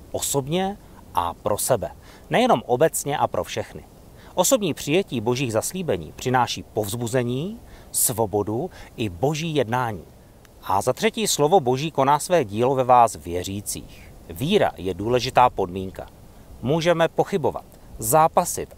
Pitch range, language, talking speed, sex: 110-165 Hz, Czech, 120 wpm, male